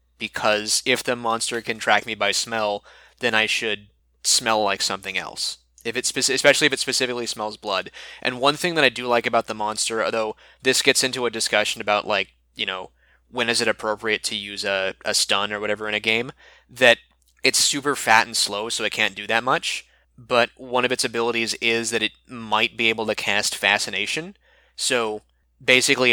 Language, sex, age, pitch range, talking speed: English, male, 20-39, 105-125 Hz, 200 wpm